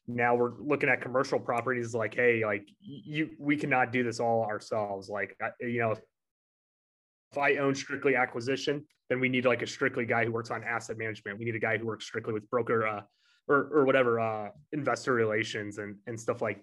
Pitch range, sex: 115-135 Hz, male